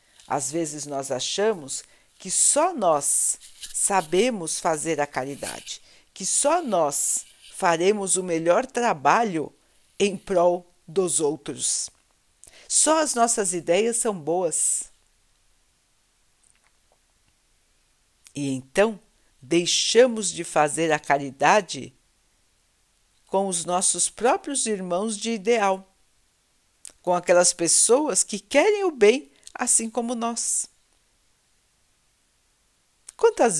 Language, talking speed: Portuguese, 95 wpm